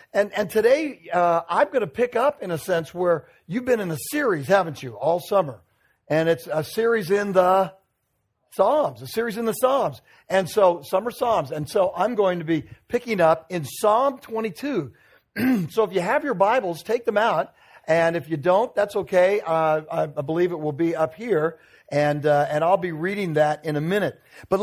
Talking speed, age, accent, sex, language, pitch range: 205 wpm, 50-69, American, male, English, 150-215 Hz